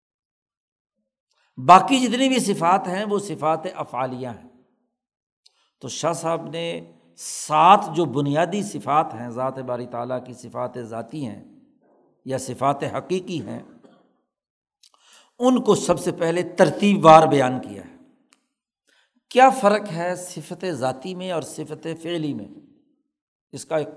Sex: male